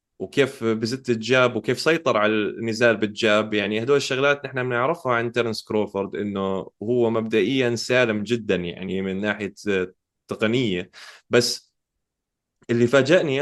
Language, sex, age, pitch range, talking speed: Arabic, male, 20-39, 105-140 Hz, 125 wpm